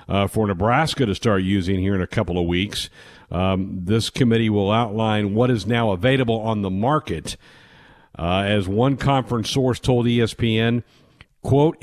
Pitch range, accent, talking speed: 105-140 Hz, American, 160 wpm